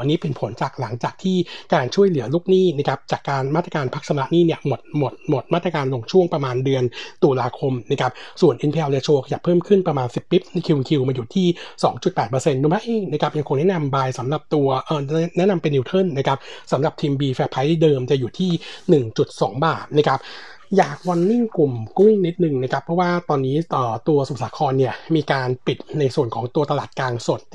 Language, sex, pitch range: Thai, male, 130-170 Hz